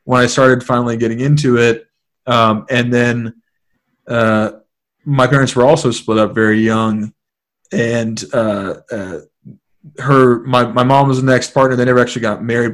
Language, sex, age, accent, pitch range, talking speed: English, male, 20-39, American, 110-130 Hz, 165 wpm